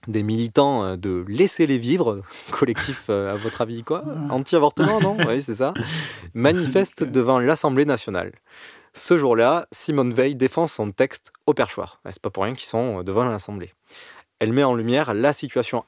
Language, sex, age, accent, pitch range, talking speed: French, male, 20-39, French, 115-145 Hz, 165 wpm